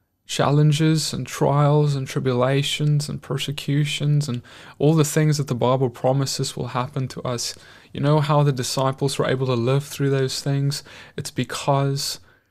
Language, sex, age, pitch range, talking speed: English, male, 20-39, 120-140 Hz, 160 wpm